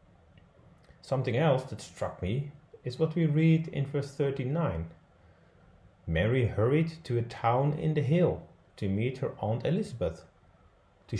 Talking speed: 140 wpm